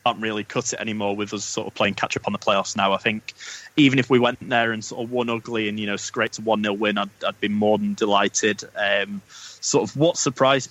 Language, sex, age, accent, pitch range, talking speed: English, male, 20-39, British, 100-115 Hz, 260 wpm